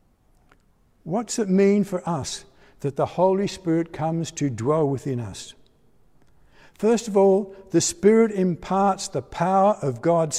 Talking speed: 140 wpm